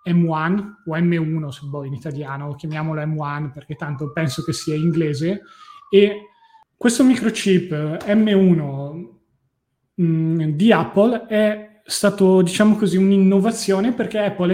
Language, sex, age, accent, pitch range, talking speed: Italian, male, 20-39, native, 160-190 Hz, 115 wpm